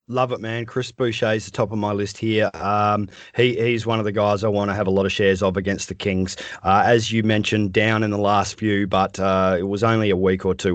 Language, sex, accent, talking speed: English, male, Australian, 275 wpm